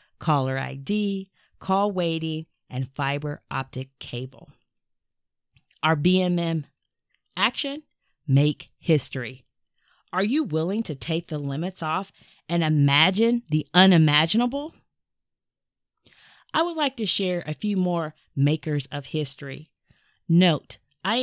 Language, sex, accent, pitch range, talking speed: English, female, American, 140-185 Hz, 105 wpm